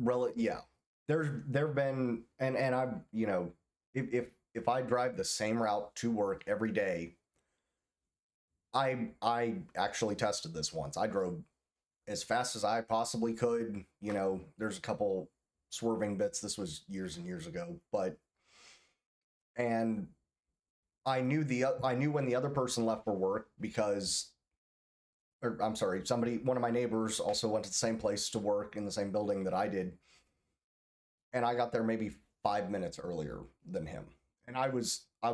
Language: English